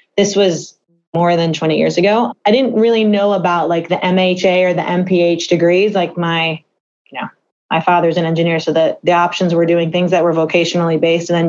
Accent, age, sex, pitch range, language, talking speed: American, 30-49, female, 170-205 Hz, English, 210 wpm